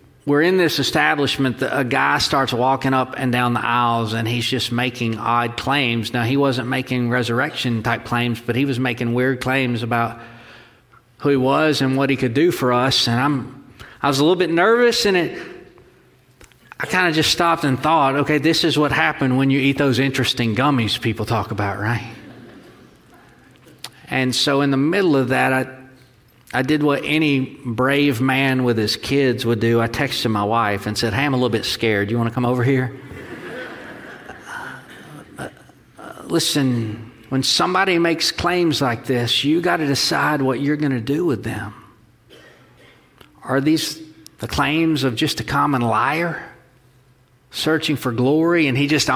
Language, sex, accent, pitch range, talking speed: English, male, American, 120-145 Hz, 180 wpm